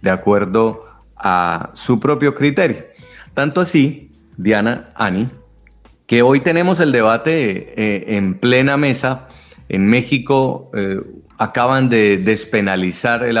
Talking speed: 110 wpm